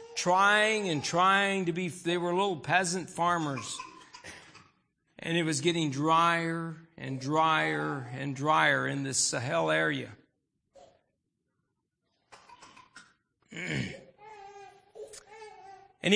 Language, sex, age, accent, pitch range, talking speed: English, male, 60-79, American, 160-220 Hz, 90 wpm